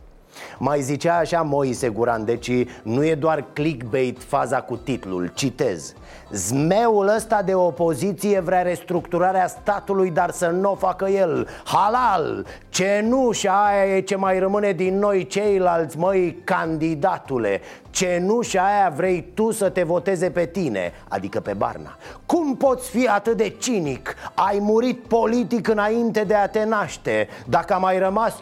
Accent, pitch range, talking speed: native, 160-205 Hz, 150 wpm